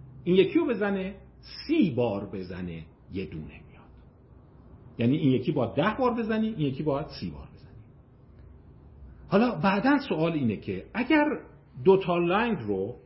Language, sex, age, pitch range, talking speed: Persian, male, 50-69, 100-165 Hz, 145 wpm